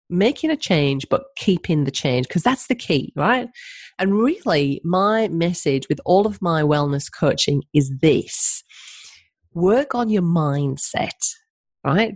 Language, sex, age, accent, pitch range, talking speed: English, female, 30-49, British, 150-250 Hz, 145 wpm